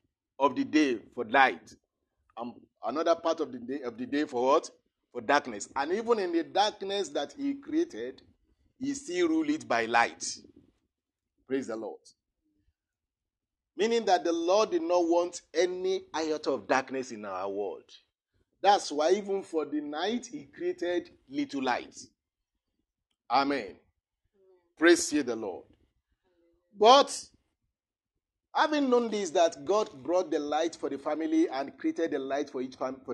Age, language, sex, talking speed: 50-69, English, male, 150 wpm